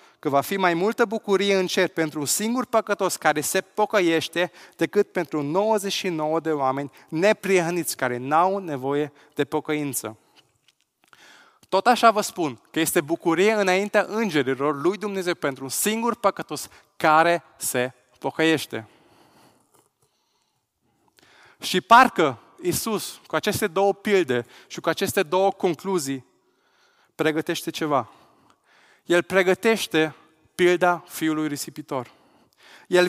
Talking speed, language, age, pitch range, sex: 115 wpm, Romanian, 20-39, 145-195 Hz, male